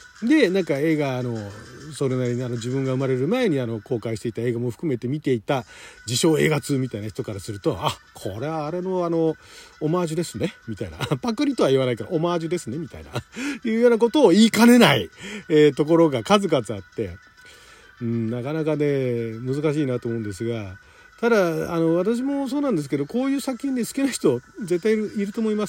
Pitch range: 140-230 Hz